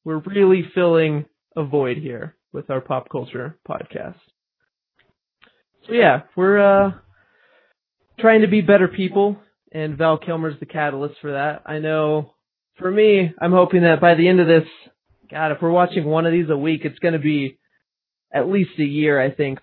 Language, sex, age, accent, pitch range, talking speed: English, male, 20-39, American, 145-180 Hz, 175 wpm